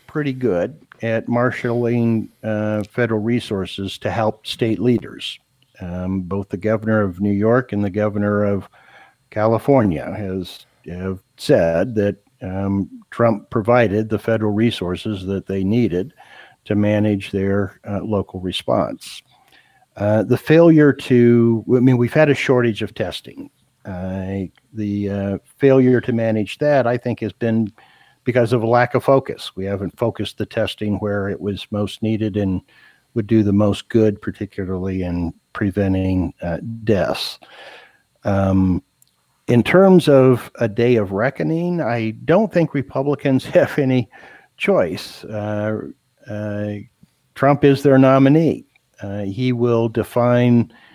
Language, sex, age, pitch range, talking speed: English, male, 60-79, 100-125 Hz, 135 wpm